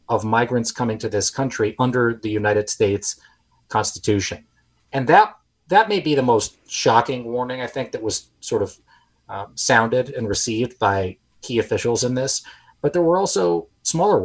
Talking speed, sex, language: 170 wpm, male, English